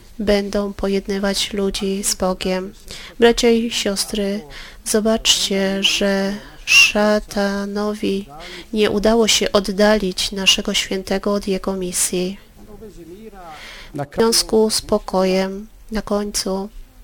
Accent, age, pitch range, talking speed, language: native, 30-49, 190-220 Hz, 90 wpm, Polish